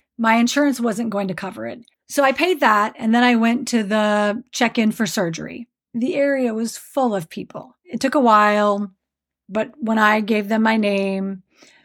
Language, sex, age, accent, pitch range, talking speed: English, female, 30-49, American, 200-245 Hz, 185 wpm